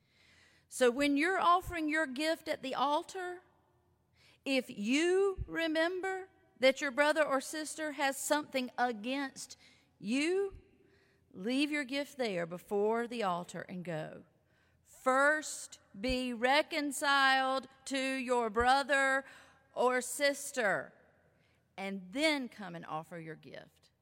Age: 40-59